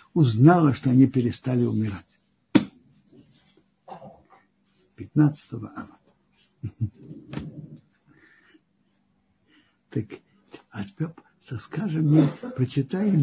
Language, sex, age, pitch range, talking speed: Russian, male, 60-79, 130-175 Hz, 55 wpm